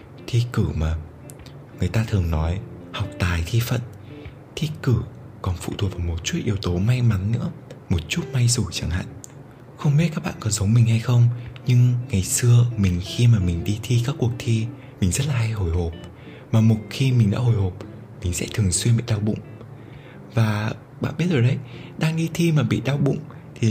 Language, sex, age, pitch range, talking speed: Vietnamese, male, 20-39, 100-125 Hz, 215 wpm